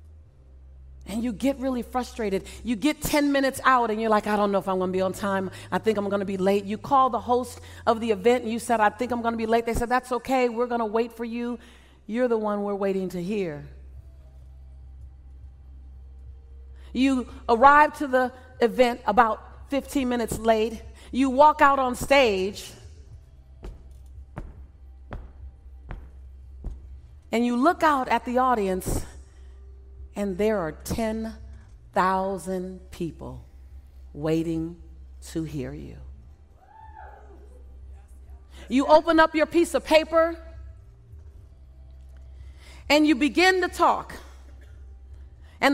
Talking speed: 135 wpm